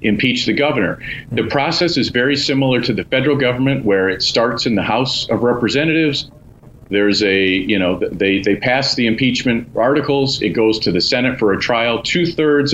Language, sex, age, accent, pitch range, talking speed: English, male, 40-59, American, 110-135 Hz, 185 wpm